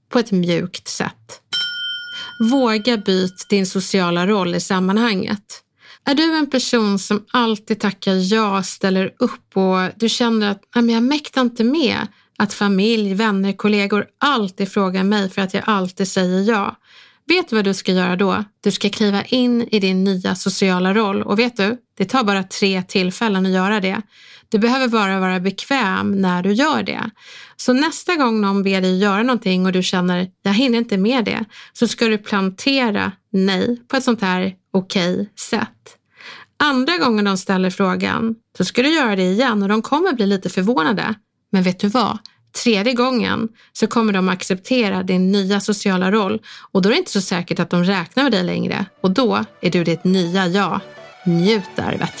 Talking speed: 180 wpm